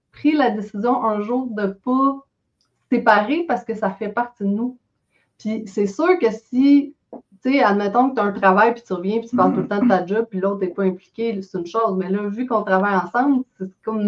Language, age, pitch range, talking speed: French, 30-49, 190-230 Hz, 245 wpm